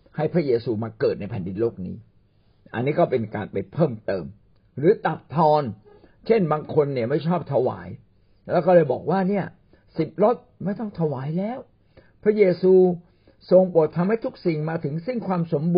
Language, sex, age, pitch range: Thai, male, 60-79, 110-180 Hz